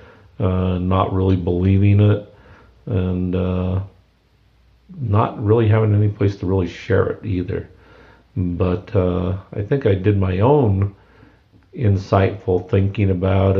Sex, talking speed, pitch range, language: male, 125 wpm, 90-105 Hz, English